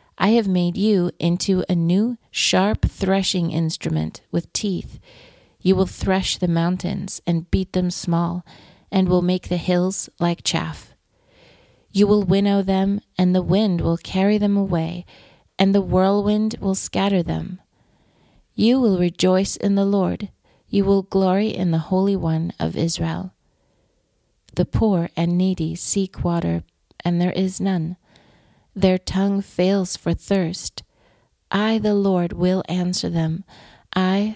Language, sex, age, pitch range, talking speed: English, female, 30-49, 170-195 Hz, 145 wpm